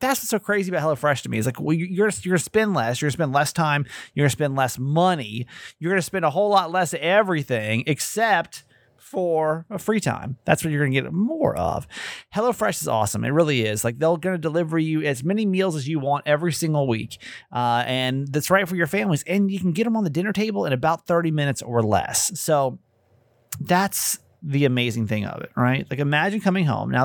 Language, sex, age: English, male, 30-49